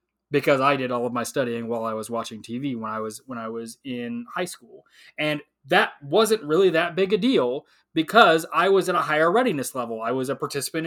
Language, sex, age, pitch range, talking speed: English, male, 20-39, 135-175 Hz, 225 wpm